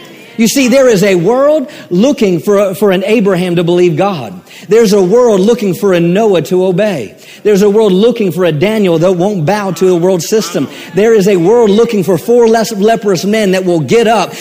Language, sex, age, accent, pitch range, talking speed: English, male, 50-69, American, 195-245 Hz, 210 wpm